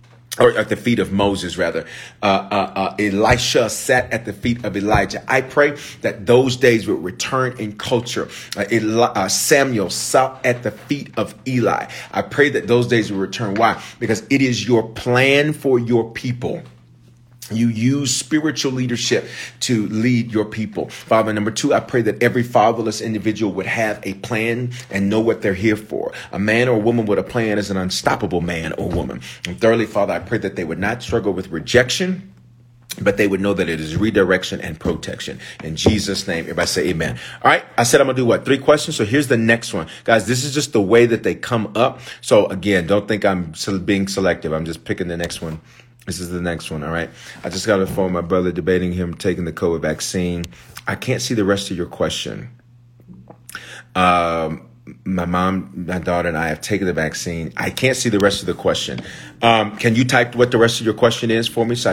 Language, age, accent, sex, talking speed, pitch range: English, 40-59, American, male, 215 wpm, 90-120 Hz